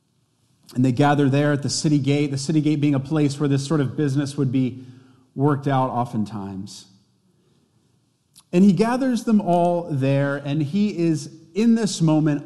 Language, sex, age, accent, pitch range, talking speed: English, male, 40-59, American, 130-165 Hz, 175 wpm